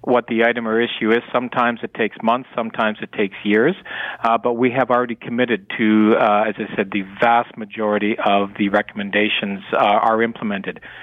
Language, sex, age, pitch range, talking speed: English, male, 50-69, 110-125 Hz, 185 wpm